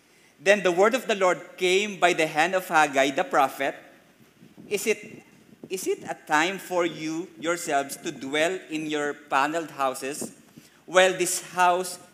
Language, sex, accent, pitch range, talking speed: English, male, Filipino, 145-185 Hz, 160 wpm